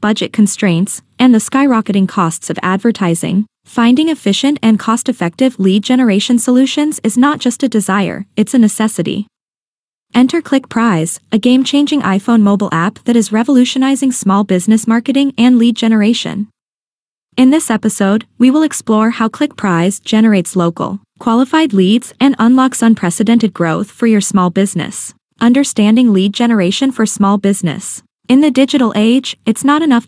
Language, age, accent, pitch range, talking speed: English, 20-39, American, 200-255 Hz, 145 wpm